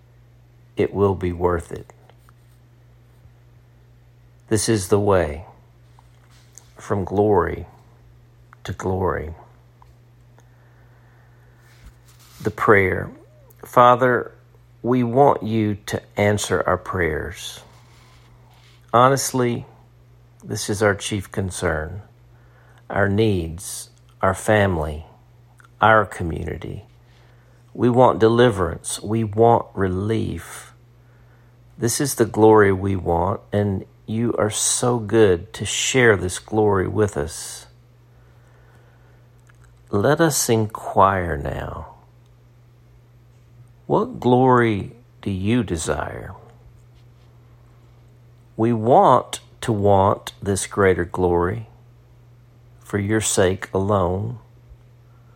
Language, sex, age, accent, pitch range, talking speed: English, male, 50-69, American, 105-120 Hz, 85 wpm